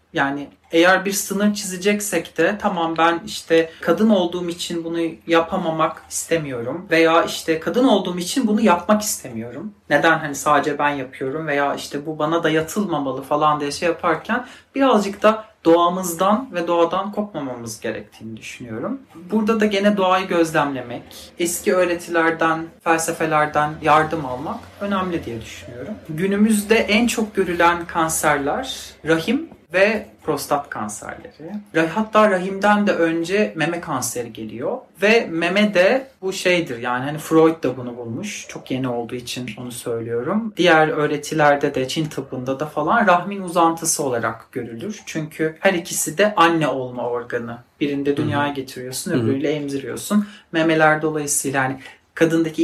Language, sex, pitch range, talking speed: Turkish, male, 145-195 Hz, 135 wpm